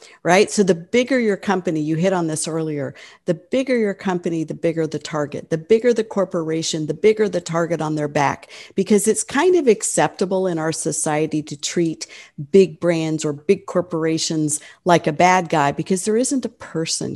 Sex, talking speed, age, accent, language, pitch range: female, 190 wpm, 50-69, American, English, 150-190 Hz